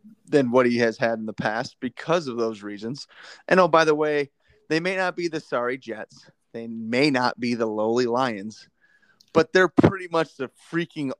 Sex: male